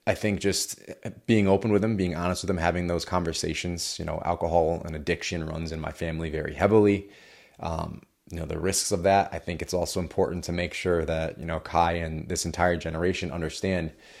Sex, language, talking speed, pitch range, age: male, English, 205 wpm, 80-95 Hz, 20-39